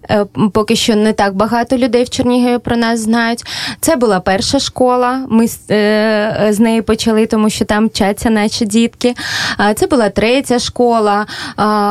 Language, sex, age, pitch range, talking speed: Ukrainian, female, 20-39, 200-235 Hz, 145 wpm